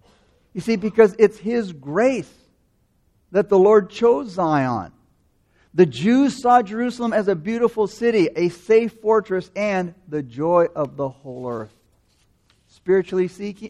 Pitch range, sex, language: 140-200 Hz, male, English